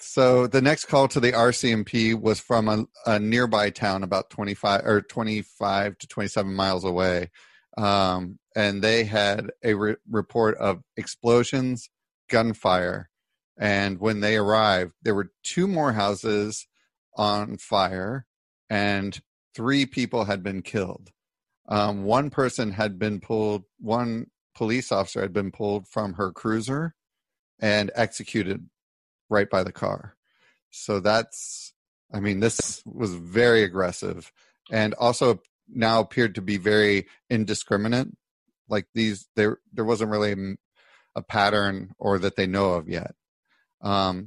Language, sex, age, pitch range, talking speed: English, male, 40-59, 100-115 Hz, 135 wpm